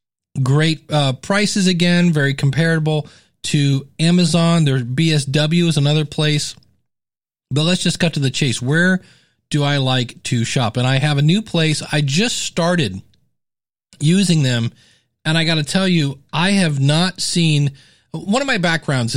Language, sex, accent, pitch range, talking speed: English, male, American, 140-180 Hz, 160 wpm